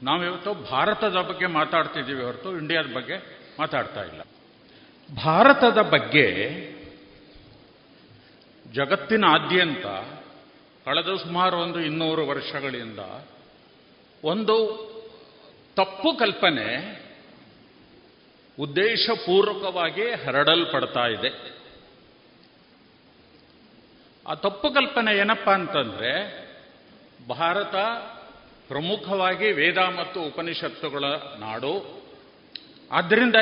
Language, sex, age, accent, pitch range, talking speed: Kannada, male, 50-69, native, 160-220 Hz, 60 wpm